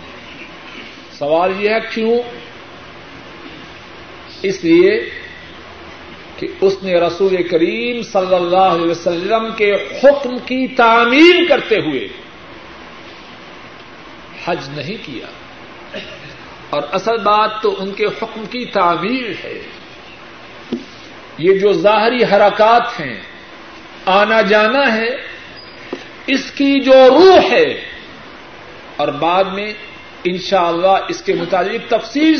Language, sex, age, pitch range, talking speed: Urdu, male, 50-69, 200-290 Hz, 105 wpm